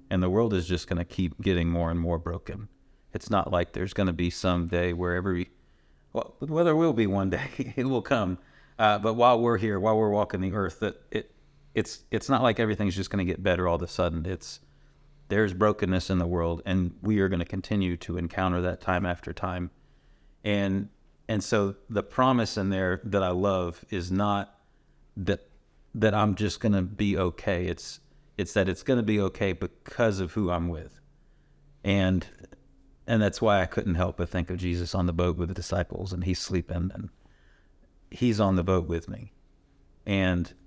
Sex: male